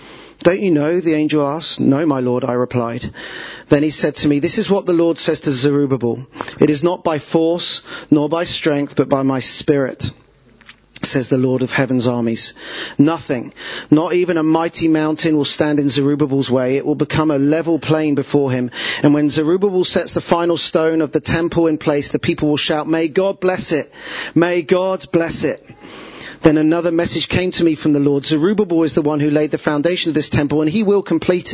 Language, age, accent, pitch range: English, 40-59, British, 140-170 Hz